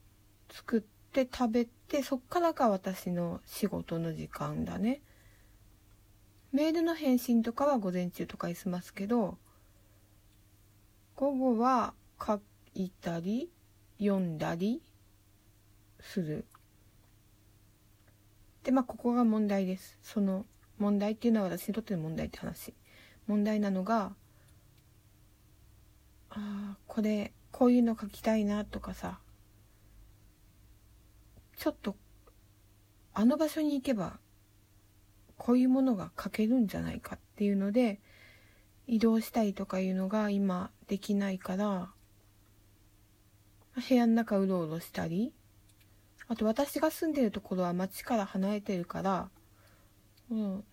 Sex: female